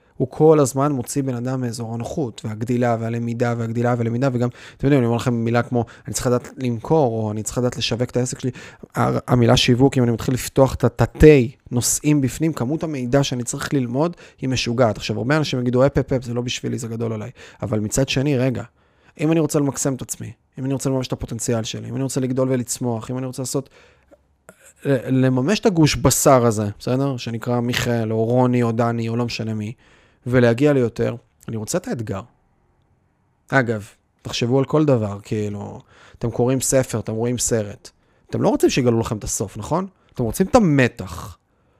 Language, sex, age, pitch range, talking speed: Hebrew, male, 20-39, 115-140 Hz, 170 wpm